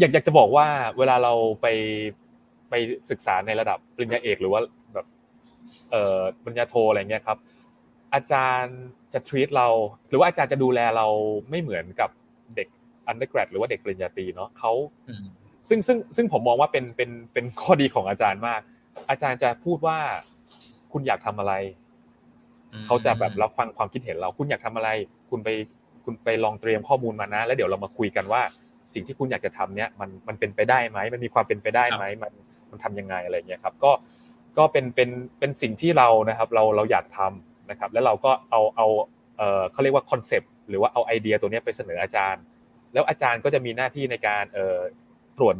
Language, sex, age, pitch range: Thai, male, 20-39, 110-145 Hz